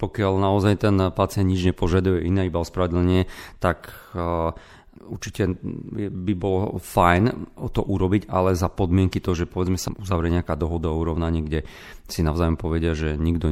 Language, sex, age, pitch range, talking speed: Slovak, male, 40-59, 85-100 Hz, 150 wpm